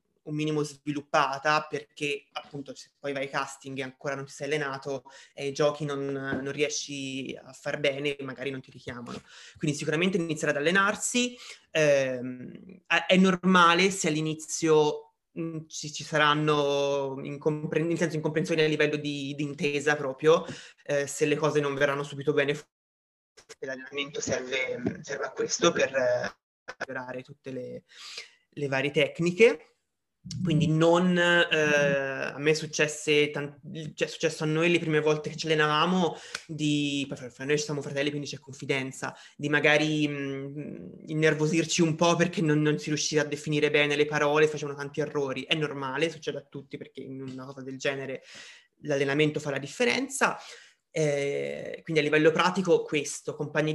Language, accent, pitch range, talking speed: Italian, native, 140-160 Hz, 155 wpm